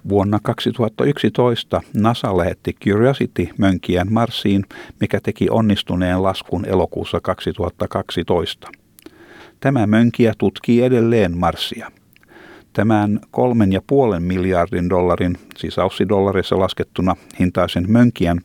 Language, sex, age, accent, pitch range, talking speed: Finnish, male, 50-69, native, 90-110 Hz, 90 wpm